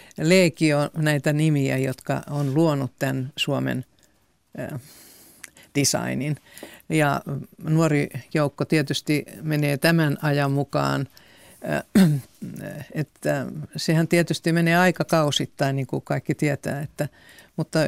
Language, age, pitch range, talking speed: Finnish, 50-69, 140-165 Hz, 95 wpm